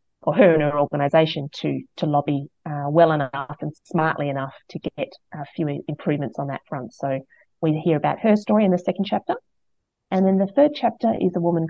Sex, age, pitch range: female, 30-49, 145-170 Hz